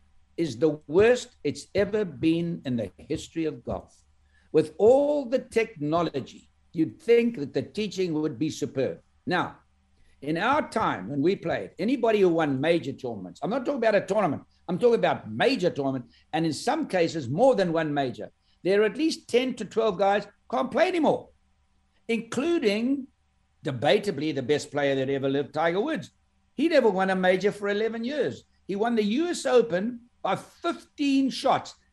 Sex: male